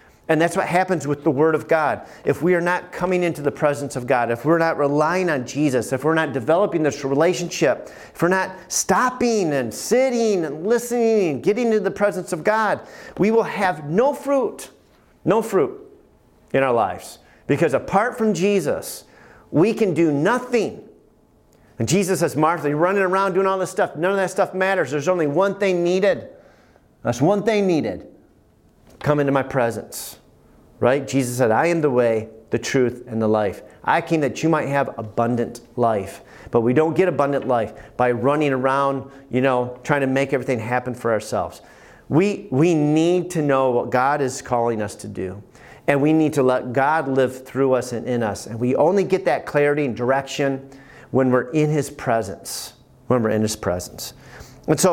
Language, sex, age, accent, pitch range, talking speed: English, male, 40-59, American, 130-185 Hz, 190 wpm